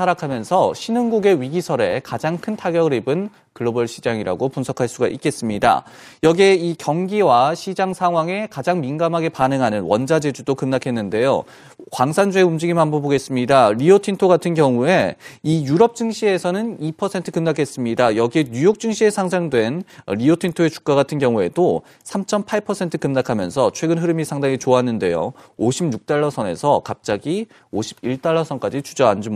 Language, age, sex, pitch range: Korean, 30-49, male, 135-190 Hz